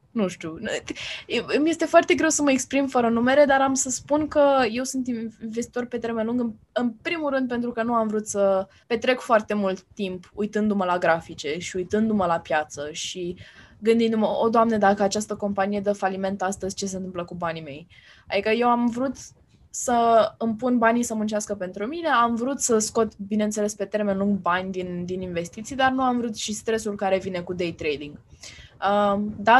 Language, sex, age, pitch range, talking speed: Romanian, female, 10-29, 185-235 Hz, 195 wpm